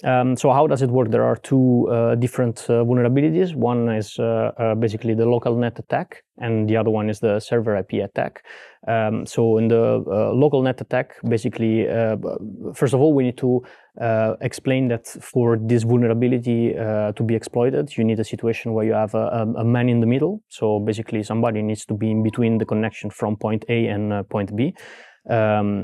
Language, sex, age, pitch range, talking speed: English, male, 20-39, 110-120 Hz, 205 wpm